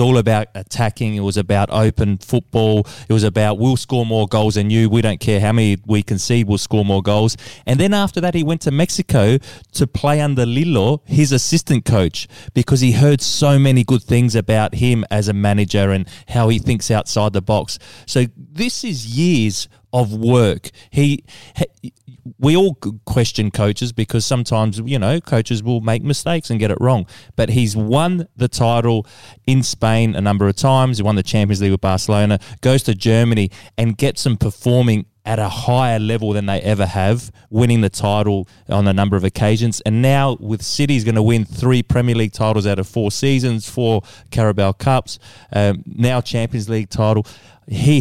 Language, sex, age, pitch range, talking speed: English, male, 20-39, 105-125 Hz, 190 wpm